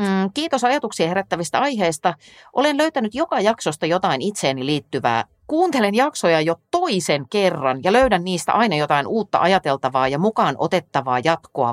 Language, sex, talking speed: Finnish, female, 140 wpm